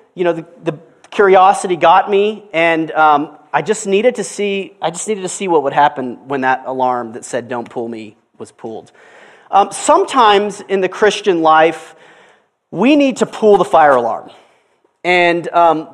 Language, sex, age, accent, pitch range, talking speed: English, male, 30-49, American, 155-205 Hz, 175 wpm